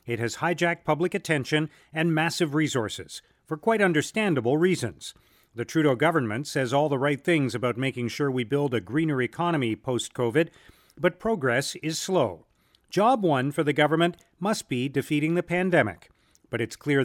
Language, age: English, 40-59